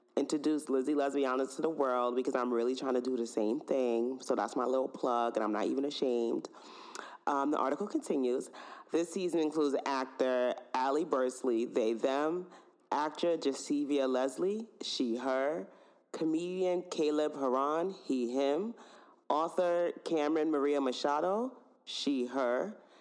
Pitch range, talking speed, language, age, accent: 125-155 Hz, 140 wpm, English, 30-49, American